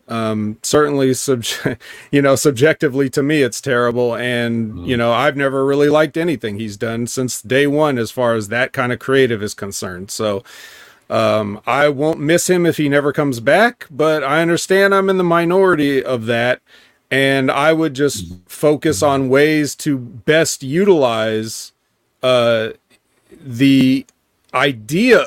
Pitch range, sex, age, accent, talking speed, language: 130-175 Hz, male, 40-59, American, 155 wpm, English